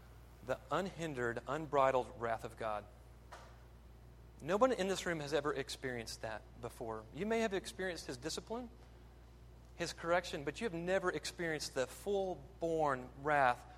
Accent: American